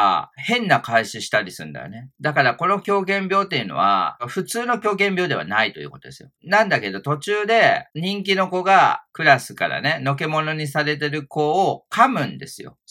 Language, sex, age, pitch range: Japanese, male, 40-59, 135-200 Hz